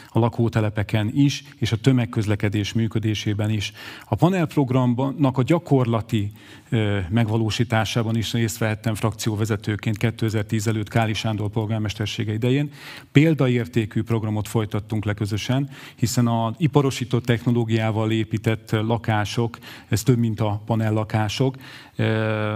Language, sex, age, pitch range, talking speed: Hungarian, male, 40-59, 110-130 Hz, 100 wpm